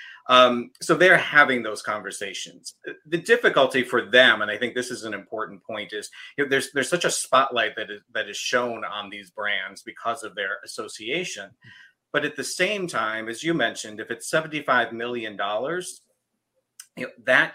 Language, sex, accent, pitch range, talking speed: English, male, American, 110-145 Hz, 170 wpm